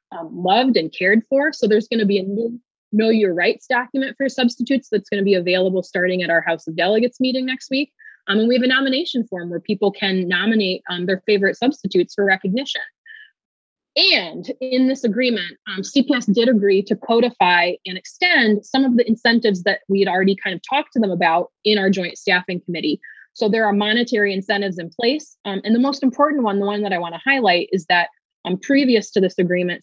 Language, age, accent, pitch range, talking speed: English, 30-49, American, 180-240 Hz, 215 wpm